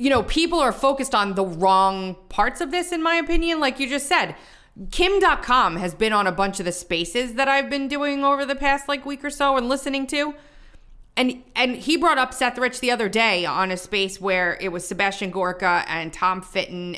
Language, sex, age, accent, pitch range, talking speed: English, female, 30-49, American, 180-255 Hz, 220 wpm